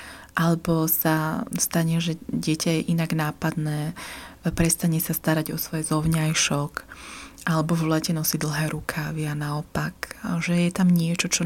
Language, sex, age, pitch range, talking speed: Slovak, female, 20-39, 155-175 Hz, 140 wpm